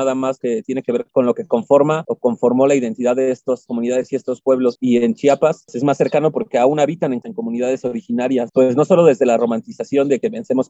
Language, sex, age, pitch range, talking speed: Spanish, male, 30-49, 125-160 Hz, 235 wpm